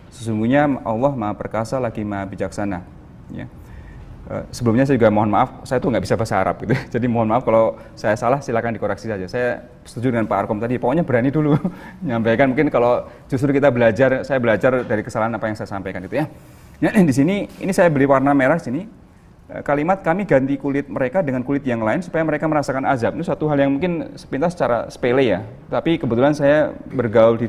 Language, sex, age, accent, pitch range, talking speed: Indonesian, male, 30-49, native, 115-145 Hz, 195 wpm